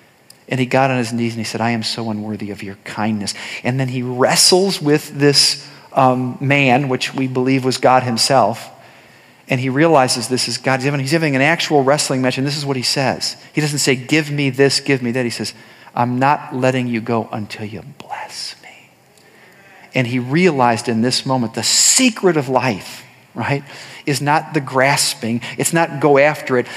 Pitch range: 120-145 Hz